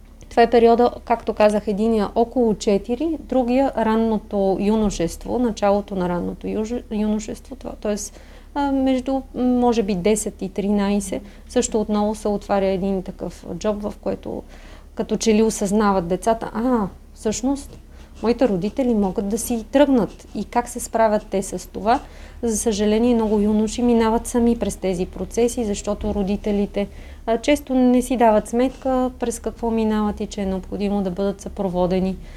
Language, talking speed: Bulgarian, 145 wpm